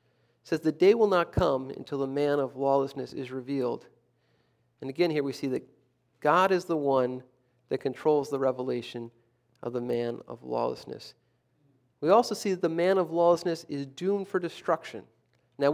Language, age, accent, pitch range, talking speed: English, 40-59, American, 125-160 Hz, 170 wpm